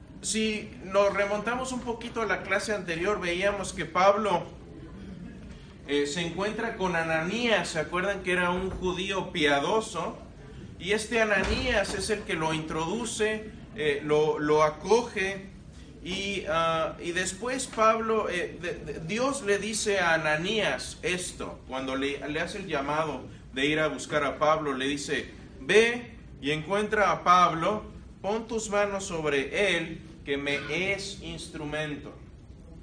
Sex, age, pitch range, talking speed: male, 40-59, 150-205 Hz, 145 wpm